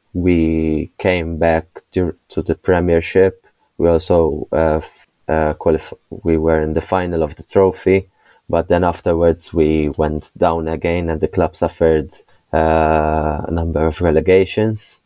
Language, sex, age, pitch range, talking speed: Hebrew, male, 20-39, 80-95 Hz, 140 wpm